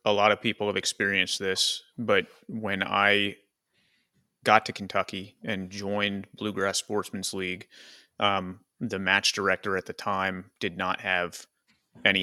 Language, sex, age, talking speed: English, male, 30-49, 140 wpm